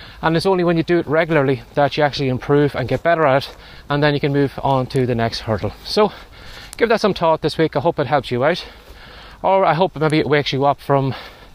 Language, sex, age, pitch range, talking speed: English, male, 20-39, 130-170 Hz, 255 wpm